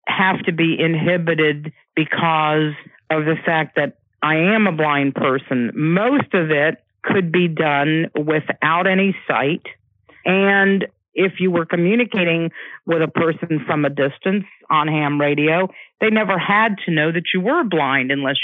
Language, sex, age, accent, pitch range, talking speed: English, female, 50-69, American, 150-180 Hz, 155 wpm